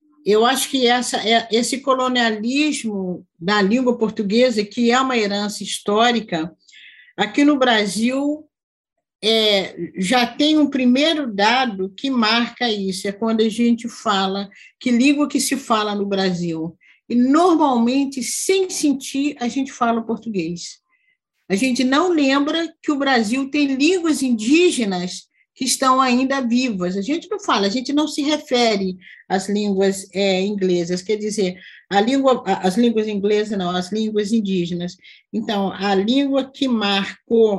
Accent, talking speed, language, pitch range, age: Brazilian, 140 wpm, Portuguese, 200-270 Hz, 50-69